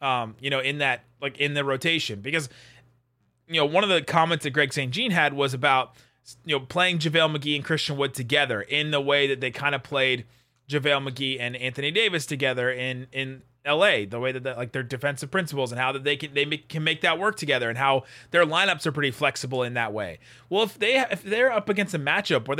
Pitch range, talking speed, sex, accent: 125-155 Hz, 235 wpm, male, American